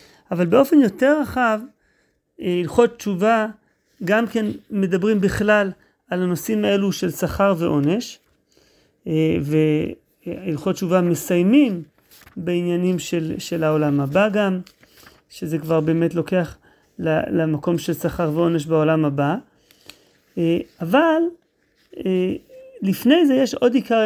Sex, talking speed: male, 100 wpm